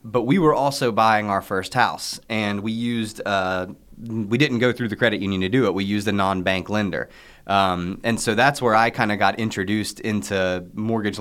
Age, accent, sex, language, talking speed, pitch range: 30-49, American, male, English, 210 wpm, 100-120 Hz